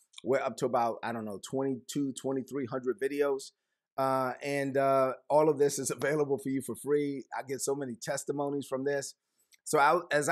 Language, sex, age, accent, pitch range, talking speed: English, male, 30-49, American, 130-160 Hz, 185 wpm